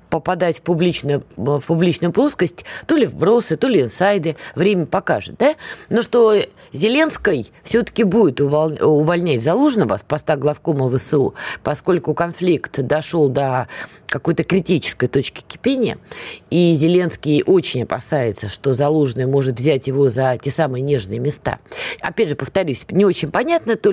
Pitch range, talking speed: 150-205 Hz, 140 wpm